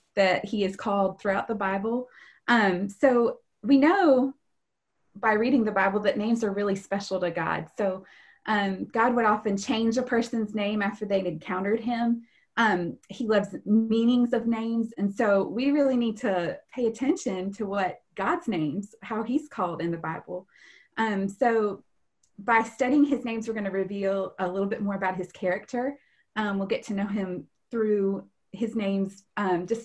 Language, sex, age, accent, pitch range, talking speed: English, female, 20-39, American, 195-245 Hz, 175 wpm